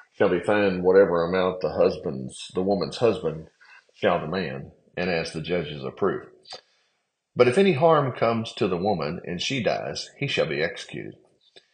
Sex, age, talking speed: male, 40-59, 165 wpm